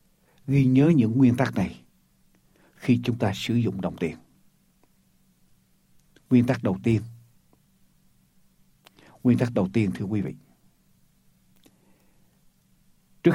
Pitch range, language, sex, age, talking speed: 100-135 Hz, Ukrainian, male, 60-79, 110 wpm